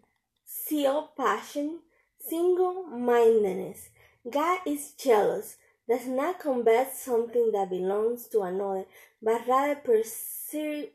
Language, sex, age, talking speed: Spanish, female, 20-39, 95 wpm